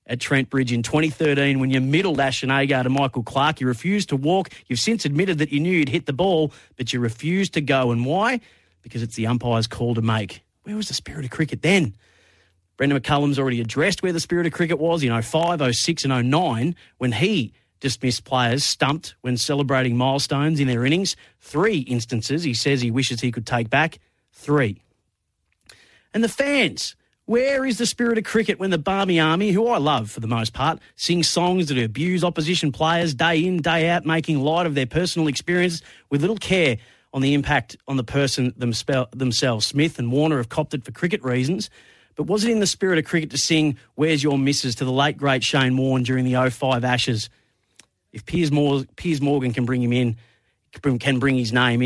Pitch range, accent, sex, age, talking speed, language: 120-160 Hz, Australian, male, 30-49, 205 wpm, English